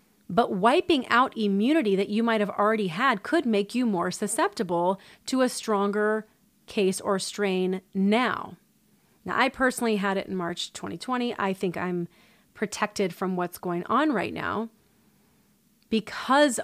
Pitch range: 195-235 Hz